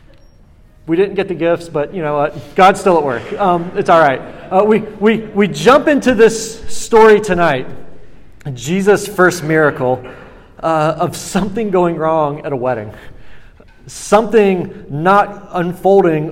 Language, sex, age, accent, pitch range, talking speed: English, male, 40-59, American, 145-200 Hz, 145 wpm